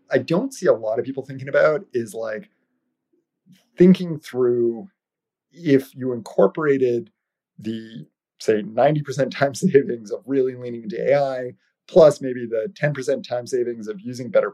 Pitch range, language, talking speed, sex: 115-150 Hz, English, 145 wpm, male